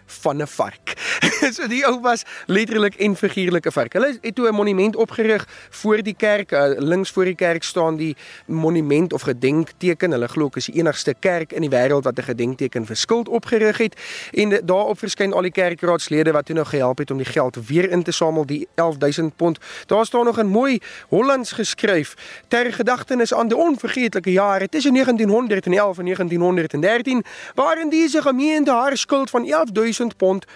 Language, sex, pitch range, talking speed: English, male, 165-235 Hz, 175 wpm